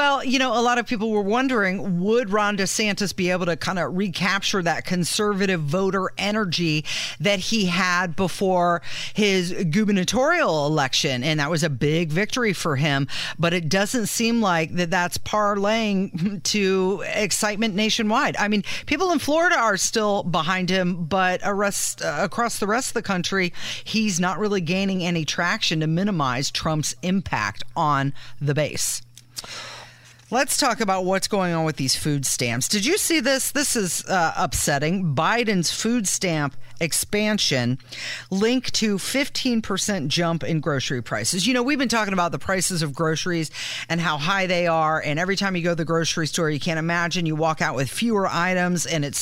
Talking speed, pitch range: 170 wpm, 160-210 Hz